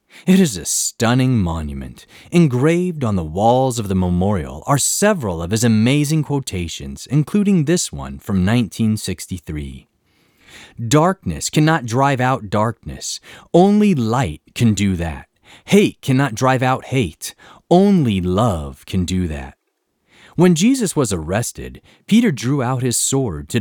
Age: 30-49